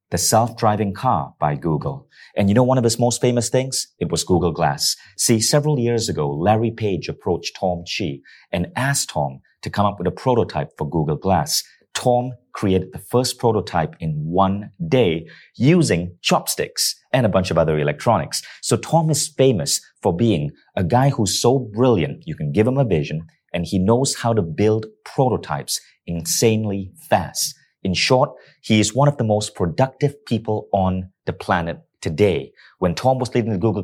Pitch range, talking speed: 95-130 Hz, 180 wpm